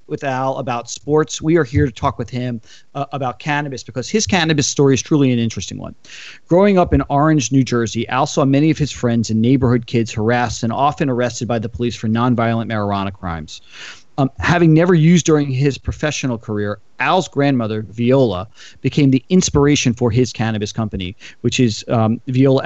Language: English